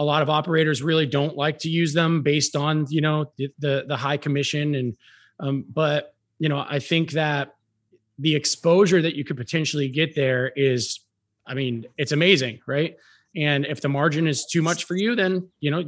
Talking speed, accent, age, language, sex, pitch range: 200 wpm, American, 30-49, English, male, 140-165 Hz